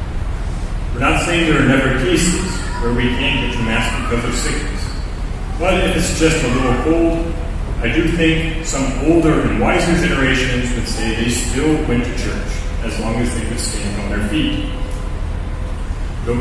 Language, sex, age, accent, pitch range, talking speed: English, male, 40-59, American, 85-135 Hz, 170 wpm